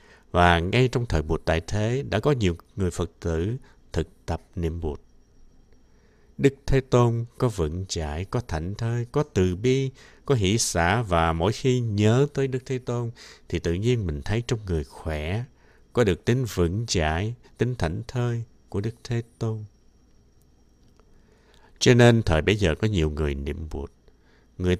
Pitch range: 85-120 Hz